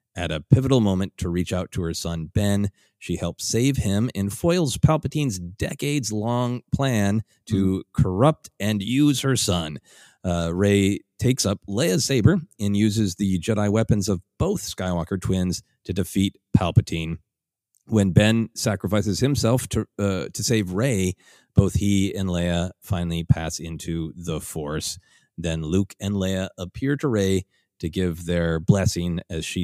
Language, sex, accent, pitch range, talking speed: English, male, American, 85-110 Hz, 155 wpm